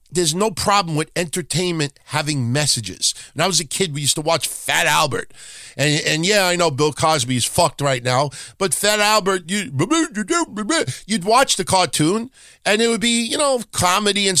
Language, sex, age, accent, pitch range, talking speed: English, male, 50-69, American, 125-190 Hz, 185 wpm